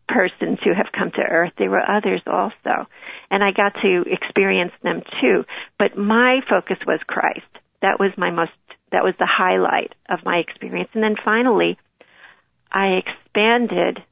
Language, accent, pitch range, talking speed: English, American, 185-230 Hz, 160 wpm